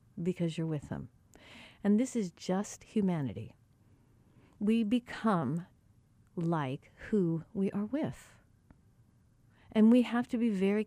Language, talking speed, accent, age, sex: English, 120 wpm, American, 50-69, female